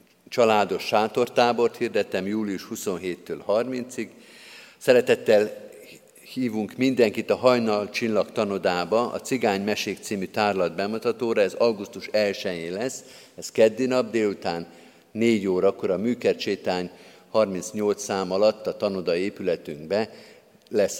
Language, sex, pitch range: Hungarian, male, 100-130 Hz